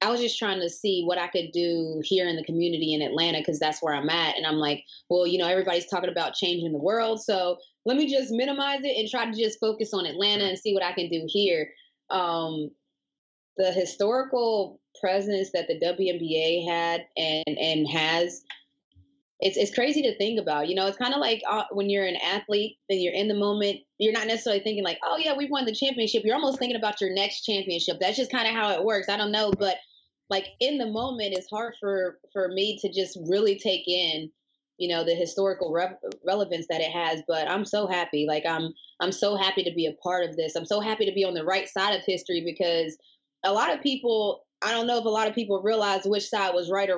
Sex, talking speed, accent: female, 235 wpm, American